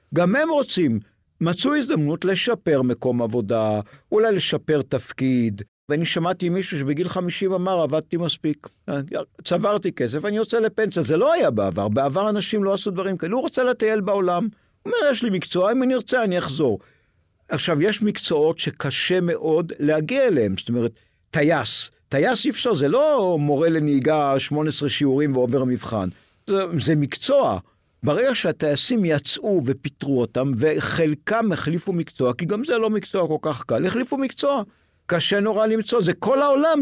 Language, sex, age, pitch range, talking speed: Hebrew, male, 50-69, 145-220 Hz, 160 wpm